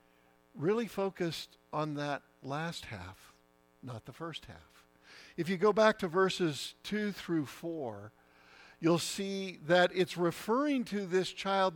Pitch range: 130-195 Hz